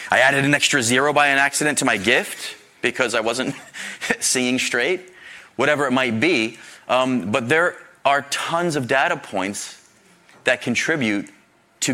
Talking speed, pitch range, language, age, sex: 155 wpm, 95-135 Hz, English, 30-49, male